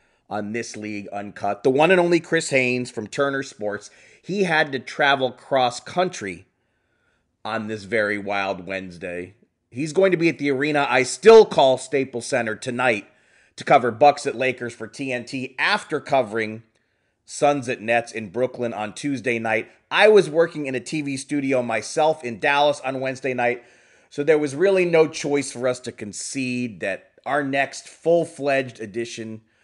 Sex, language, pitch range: male, English, 110-145 Hz